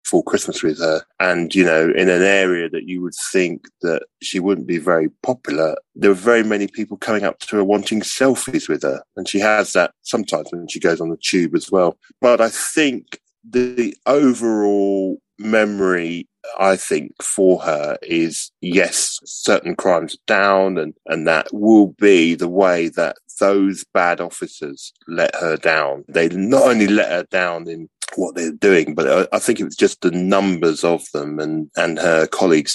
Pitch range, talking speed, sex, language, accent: 85-110 Hz, 185 wpm, male, English, British